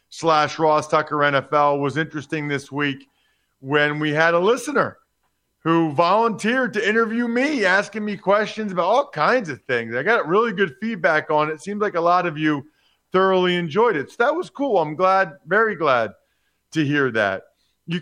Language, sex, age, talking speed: English, male, 40-59, 185 wpm